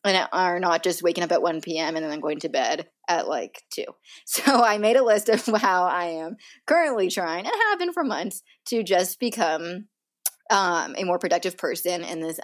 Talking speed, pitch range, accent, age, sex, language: 210 wpm, 175-240 Hz, American, 20-39, female, English